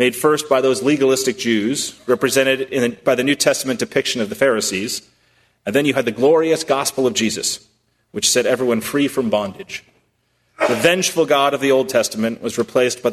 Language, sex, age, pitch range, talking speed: English, male, 30-49, 120-145 Hz, 185 wpm